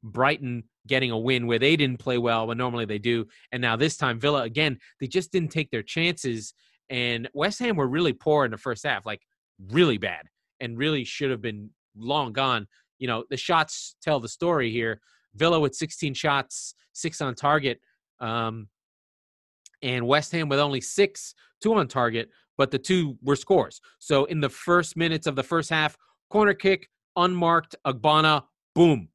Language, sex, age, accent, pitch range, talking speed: English, male, 30-49, American, 125-155 Hz, 185 wpm